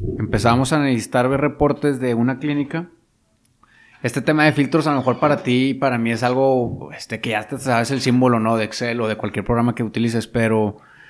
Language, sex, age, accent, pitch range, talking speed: Spanish, male, 30-49, Mexican, 115-145 Hz, 205 wpm